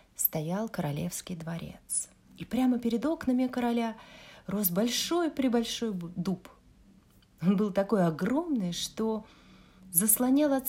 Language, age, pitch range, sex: Russian, 30-49, 180-245 Hz, female